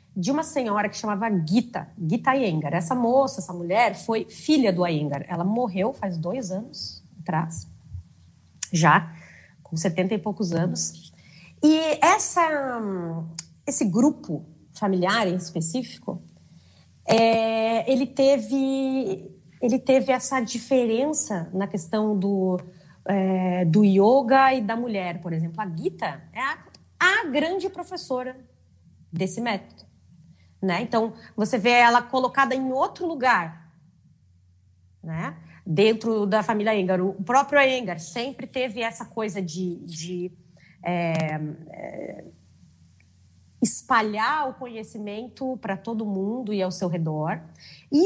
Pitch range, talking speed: 170-255 Hz, 120 wpm